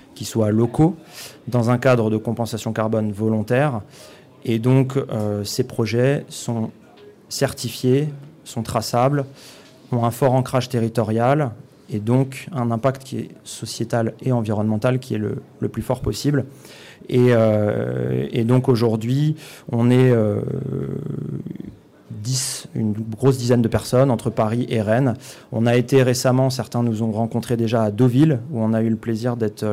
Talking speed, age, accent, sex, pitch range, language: 150 wpm, 30-49, French, male, 110-130 Hz, French